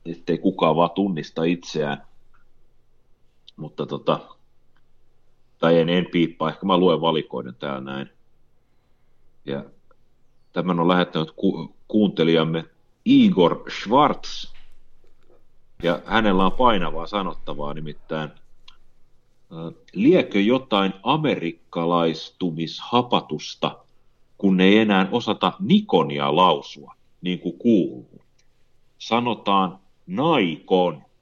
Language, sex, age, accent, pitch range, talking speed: Finnish, male, 40-59, native, 85-125 Hz, 90 wpm